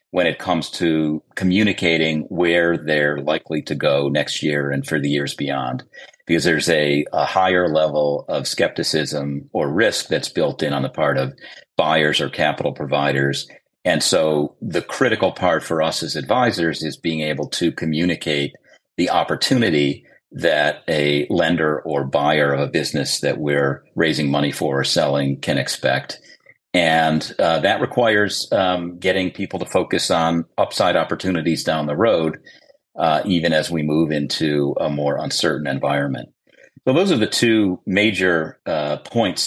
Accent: American